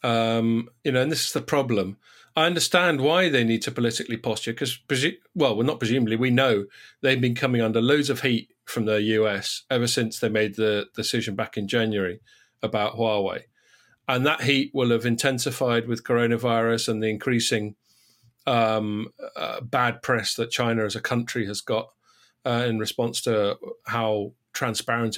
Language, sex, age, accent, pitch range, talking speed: English, male, 40-59, British, 110-130 Hz, 175 wpm